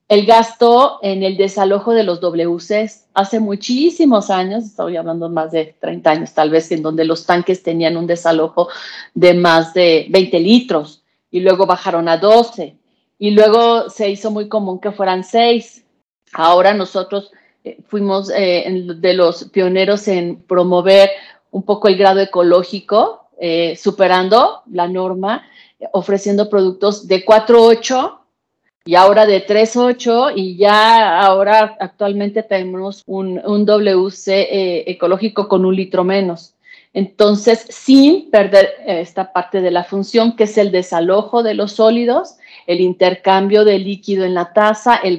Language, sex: Spanish, female